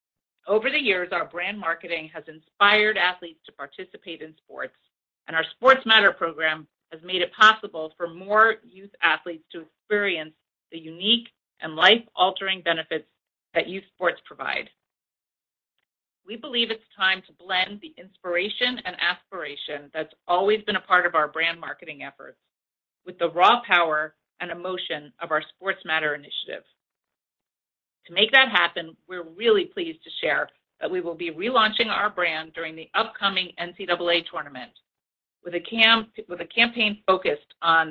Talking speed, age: 155 wpm, 40-59